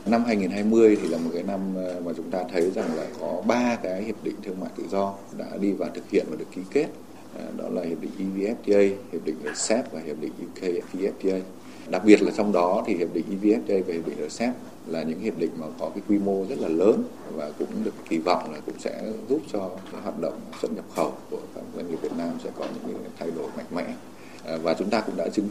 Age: 20-39